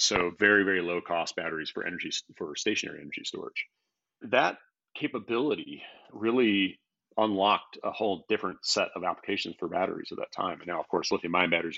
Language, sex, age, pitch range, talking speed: English, male, 40-59, 90-110 Hz, 175 wpm